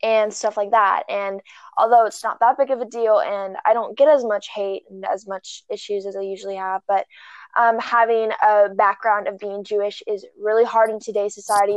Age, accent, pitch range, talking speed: 20-39, American, 205-235 Hz, 215 wpm